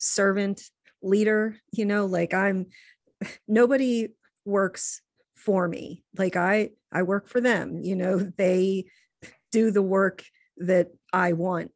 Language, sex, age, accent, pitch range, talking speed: English, female, 40-59, American, 165-200 Hz, 130 wpm